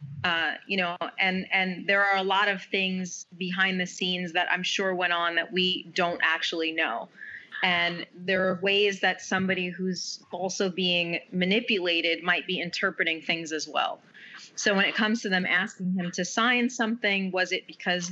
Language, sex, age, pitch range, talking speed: English, female, 30-49, 180-210 Hz, 180 wpm